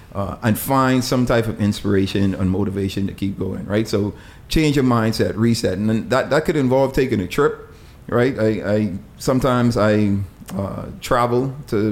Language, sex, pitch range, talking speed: English, male, 100-120 Hz, 175 wpm